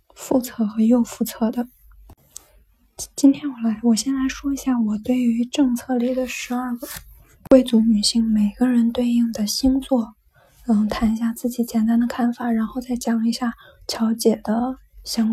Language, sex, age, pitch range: Chinese, female, 10-29, 225-250 Hz